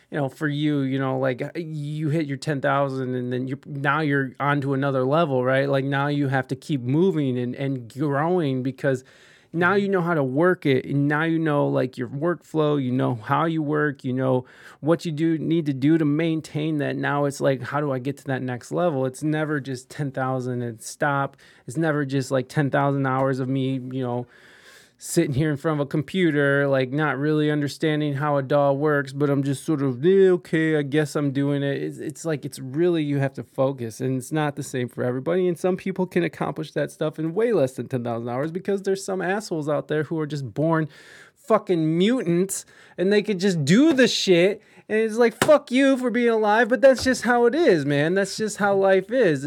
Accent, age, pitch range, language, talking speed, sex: American, 20-39, 135-170 Hz, English, 220 wpm, male